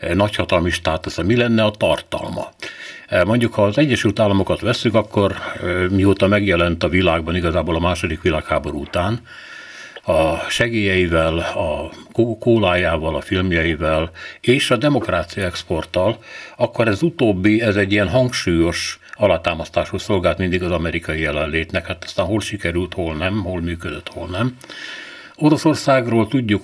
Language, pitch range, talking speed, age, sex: Hungarian, 85-110 Hz, 125 wpm, 60-79, male